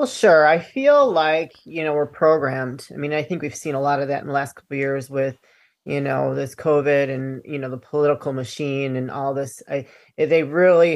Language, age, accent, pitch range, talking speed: English, 30-49, American, 140-170 Hz, 230 wpm